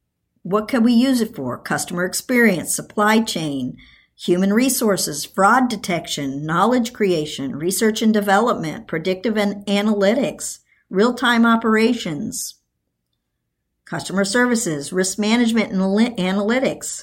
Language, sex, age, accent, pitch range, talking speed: English, male, 50-69, American, 170-230 Hz, 105 wpm